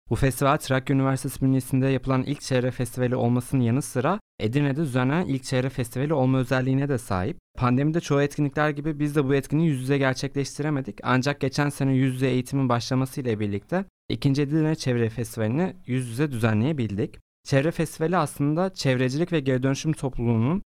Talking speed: 160 wpm